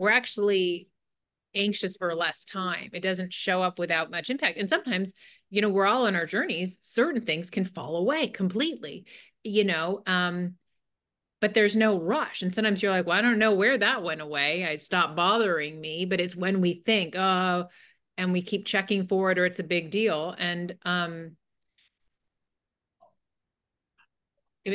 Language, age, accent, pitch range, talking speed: English, 30-49, American, 175-205 Hz, 170 wpm